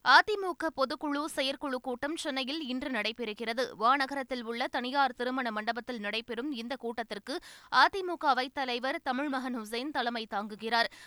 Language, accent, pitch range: Tamil, native, 240-285 Hz